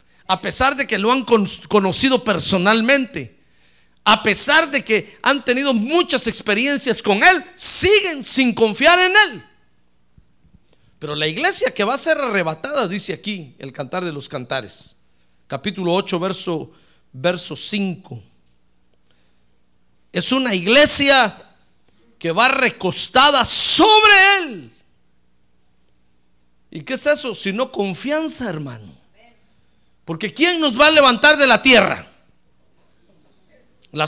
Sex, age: male, 50-69